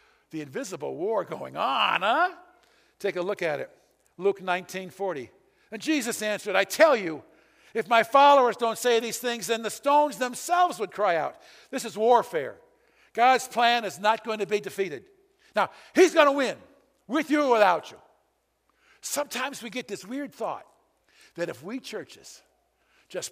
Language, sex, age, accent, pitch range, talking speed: English, male, 60-79, American, 200-290 Hz, 170 wpm